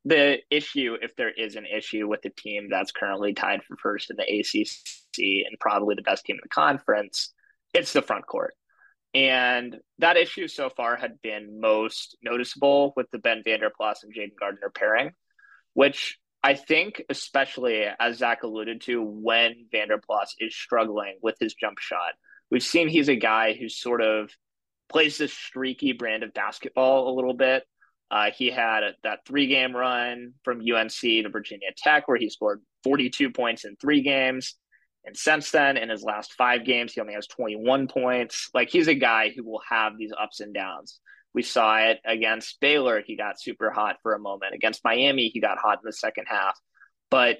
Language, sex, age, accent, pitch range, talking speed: English, male, 20-39, American, 110-140 Hz, 185 wpm